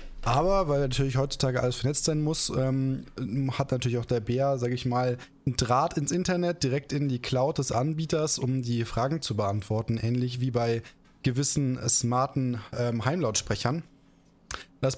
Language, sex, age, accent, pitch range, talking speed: German, male, 20-39, German, 125-145 Hz, 160 wpm